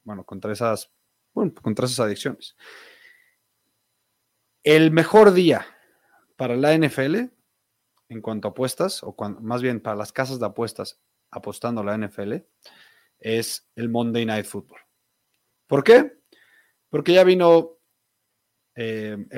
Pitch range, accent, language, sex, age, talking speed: 115-165 Hz, Mexican, Spanish, male, 30-49, 125 wpm